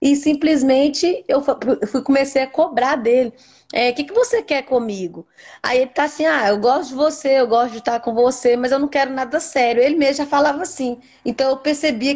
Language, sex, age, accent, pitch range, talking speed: Portuguese, female, 10-29, Brazilian, 245-295 Hz, 215 wpm